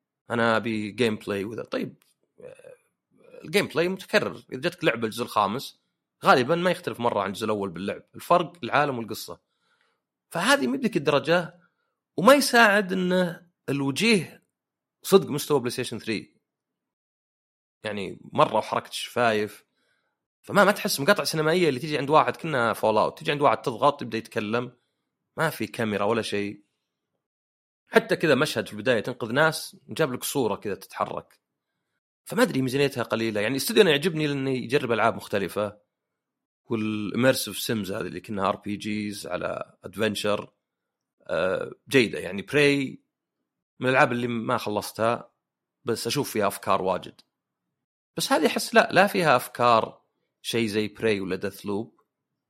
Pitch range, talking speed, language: 105-175 Hz, 140 wpm, Arabic